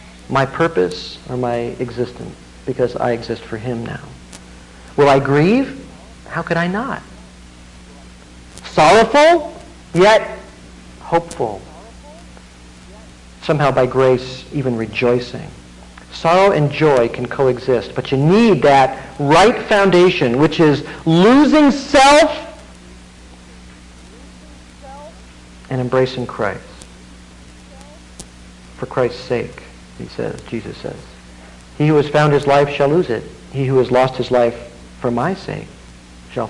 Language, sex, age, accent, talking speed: English, male, 50-69, American, 115 wpm